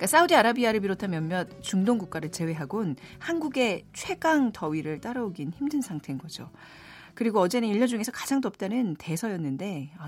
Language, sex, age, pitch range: Korean, female, 40-59, 155-235 Hz